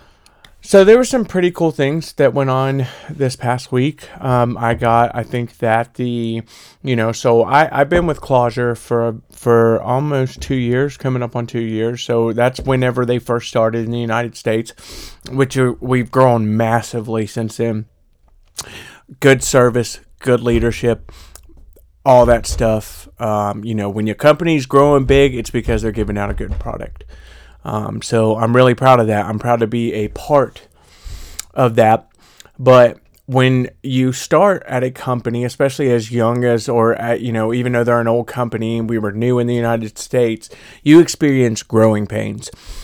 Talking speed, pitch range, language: 175 wpm, 115-130 Hz, English